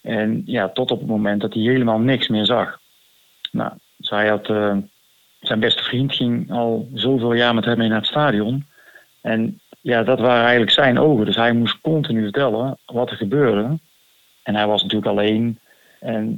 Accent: Dutch